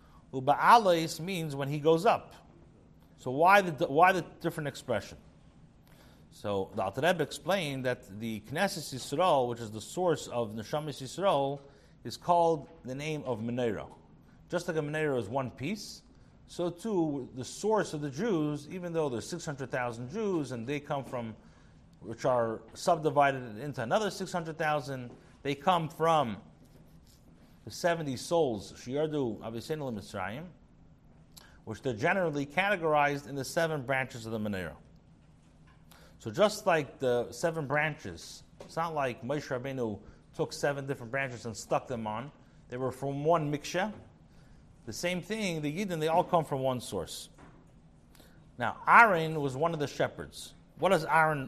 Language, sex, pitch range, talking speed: English, male, 125-170 Hz, 145 wpm